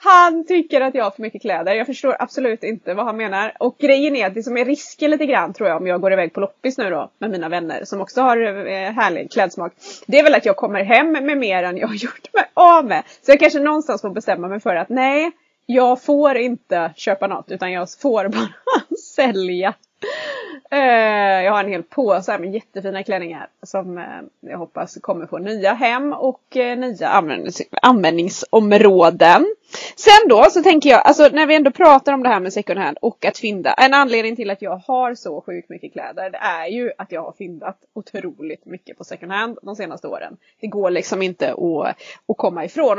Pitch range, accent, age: 200-295 Hz, Swedish, 20-39